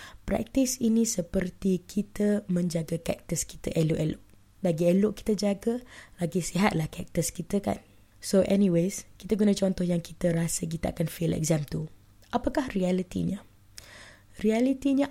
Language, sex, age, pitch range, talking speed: Malay, female, 20-39, 160-200 Hz, 130 wpm